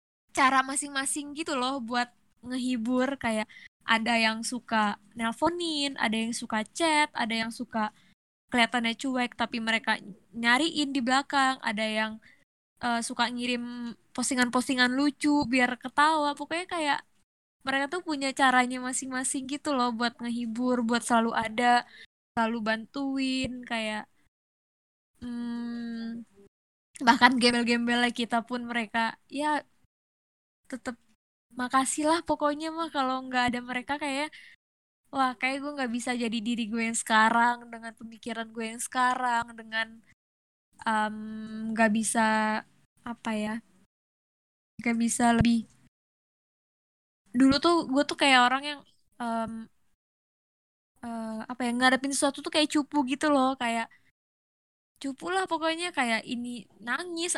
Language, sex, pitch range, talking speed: Indonesian, female, 230-275 Hz, 120 wpm